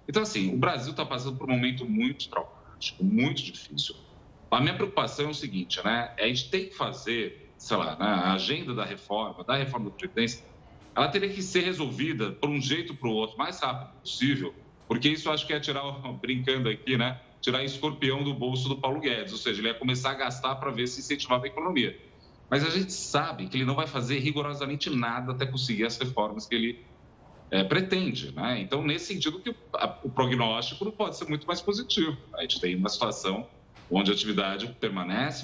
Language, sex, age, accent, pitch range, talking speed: Portuguese, male, 40-59, Brazilian, 115-150 Hz, 205 wpm